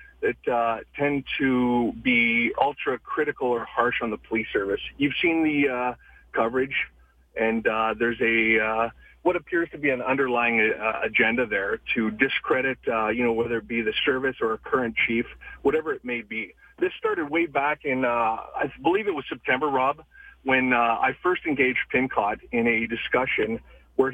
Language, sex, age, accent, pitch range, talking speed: English, male, 40-59, American, 120-170 Hz, 185 wpm